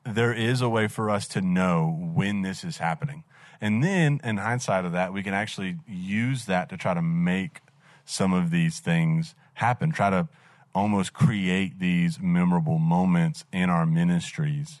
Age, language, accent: 30-49, English, American